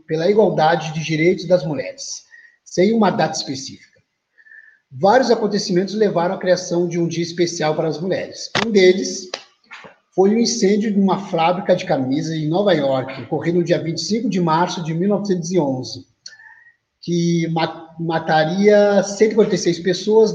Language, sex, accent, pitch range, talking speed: Portuguese, male, Brazilian, 165-210 Hz, 140 wpm